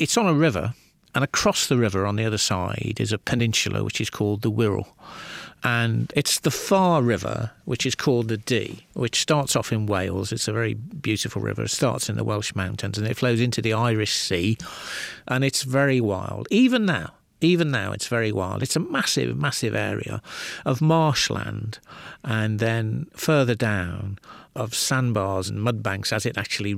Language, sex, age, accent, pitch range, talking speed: English, male, 50-69, British, 105-125 Hz, 185 wpm